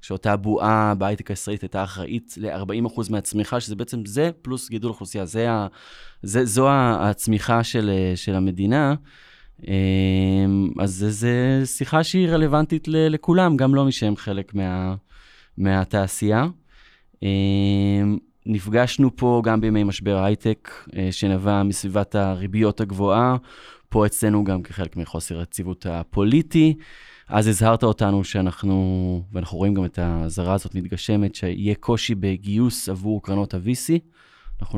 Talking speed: 115 wpm